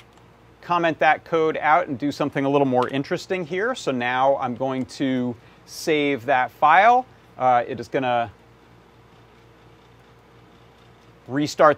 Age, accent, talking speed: 30-49, American, 130 wpm